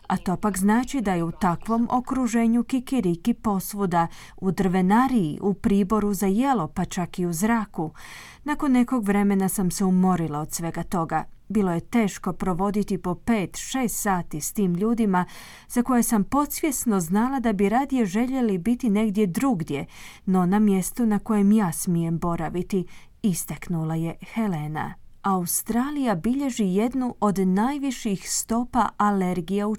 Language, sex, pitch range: Croatian, female, 185-235 Hz